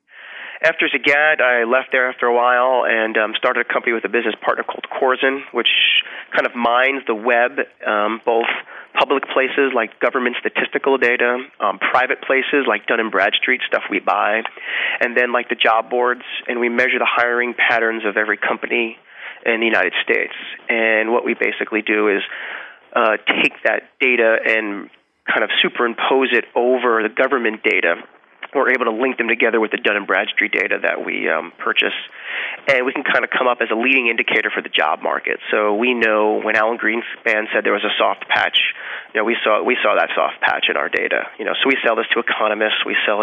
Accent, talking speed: American, 205 wpm